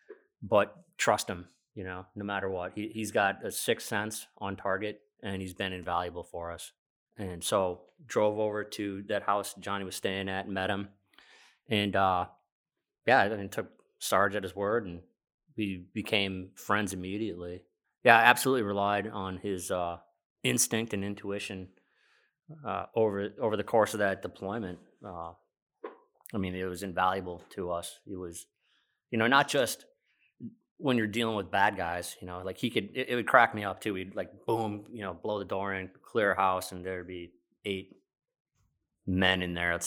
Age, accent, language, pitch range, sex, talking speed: 30-49, American, English, 90-110 Hz, male, 185 wpm